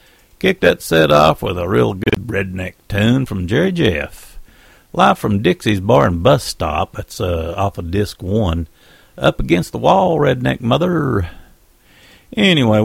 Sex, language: male, English